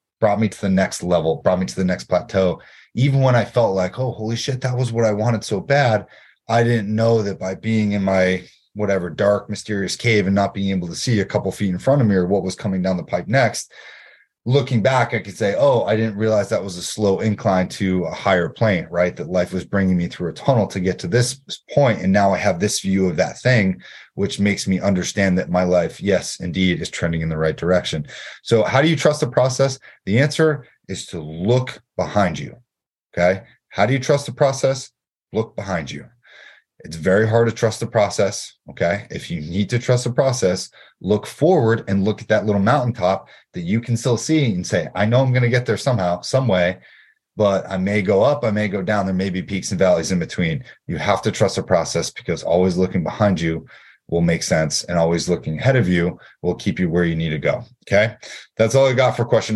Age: 30-49